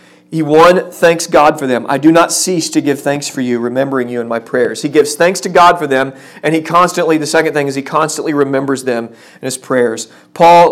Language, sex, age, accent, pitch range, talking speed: English, male, 40-59, American, 135-165 Hz, 235 wpm